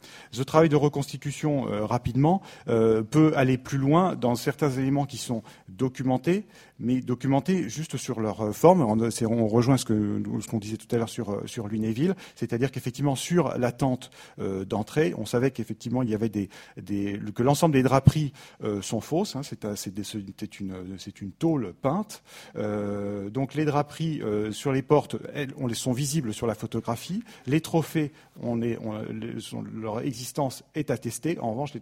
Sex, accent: male, French